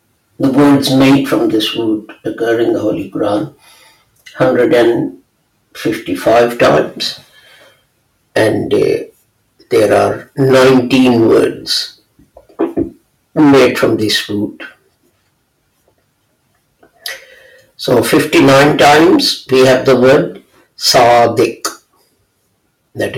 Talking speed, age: 90 wpm, 60-79